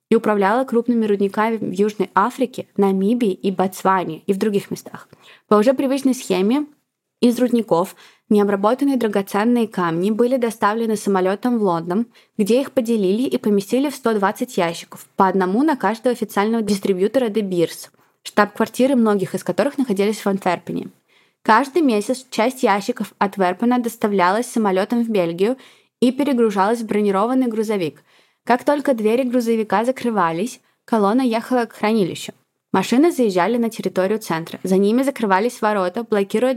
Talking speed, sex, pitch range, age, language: 140 wpm, female, 195-240 Hz, 20-39, Russian